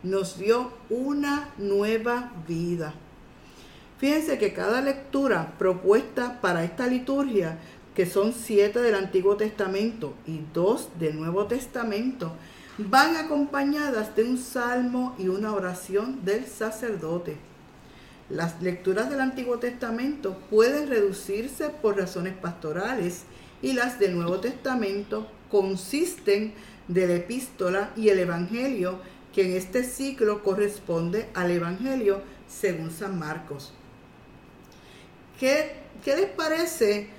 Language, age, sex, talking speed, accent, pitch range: Spanish, 50-69, female, 115 wpm, American, 190-245 Hz